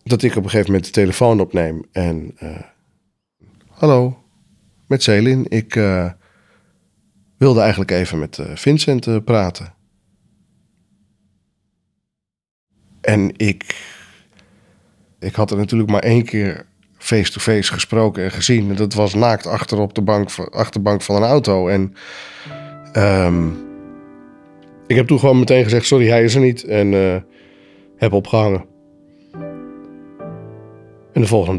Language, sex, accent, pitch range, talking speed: Dutch, male, Dutch, 95-115 Hz, 125 wpm